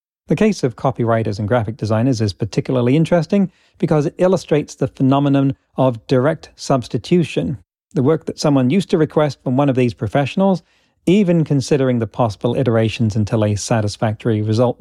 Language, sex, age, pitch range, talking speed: English, male, 40-59, 115-150 Hz, 160 wpm